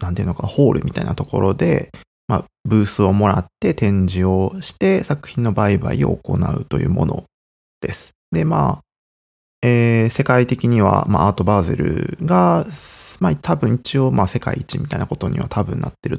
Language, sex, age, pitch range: Japanese, male, 20-39, 90-120 Hz